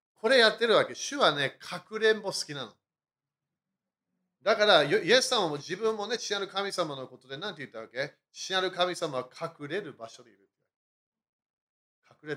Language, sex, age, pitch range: Japanese, male, 40-59, 150-225 Hz